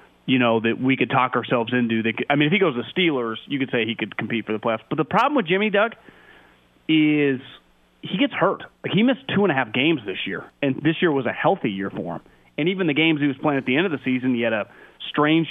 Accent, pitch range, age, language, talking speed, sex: American, 130-160 Hz, 30-49, English, 275 wpm, male